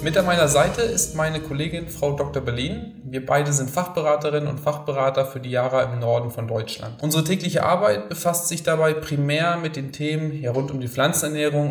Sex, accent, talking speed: male, German, 190 wpm